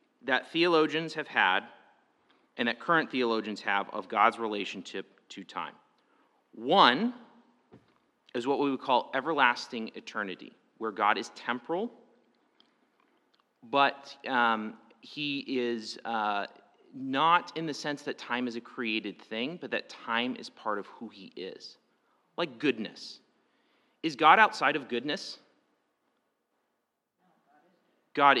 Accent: American